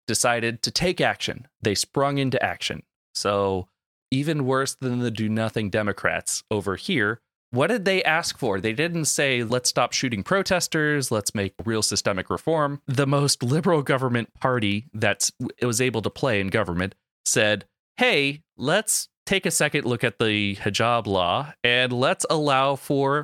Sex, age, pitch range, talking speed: male, 30-49, 110-145 Hz, 155 wpm